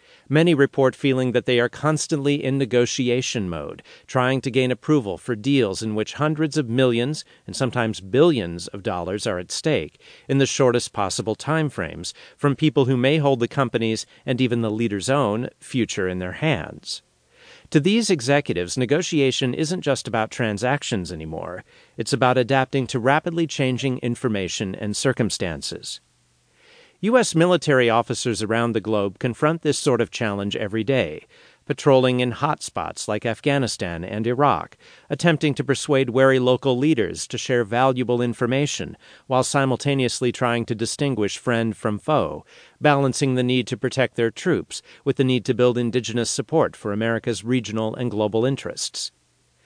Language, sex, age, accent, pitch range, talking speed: English, male, 40-59, American, 115-140 Hz, 155 wpm